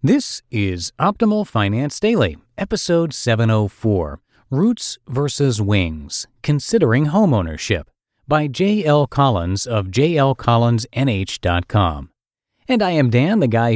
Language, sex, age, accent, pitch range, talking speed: English, male, 40-59, American, 100-145 Hz, 100 wpm